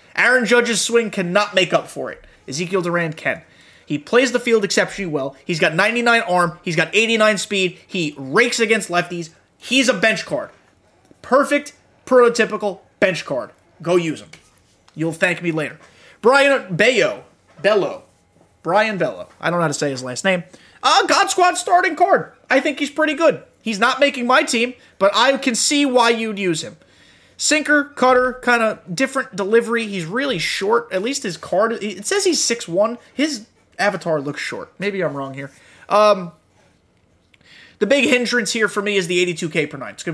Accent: American